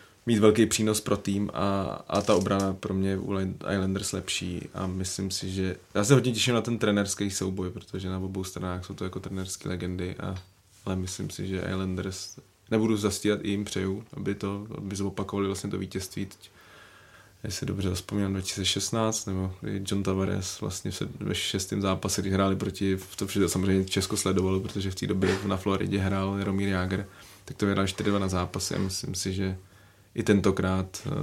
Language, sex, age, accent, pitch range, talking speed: Czech, male, 20-39, native, 95-105 Hz, 185 wpm